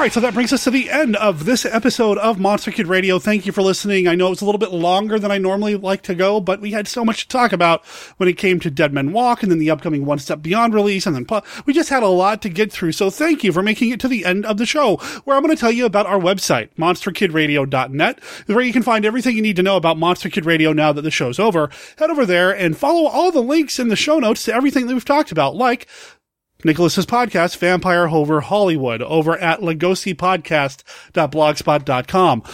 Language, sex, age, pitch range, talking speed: English, male, 30-49, 170-240 Hz, 245 wpm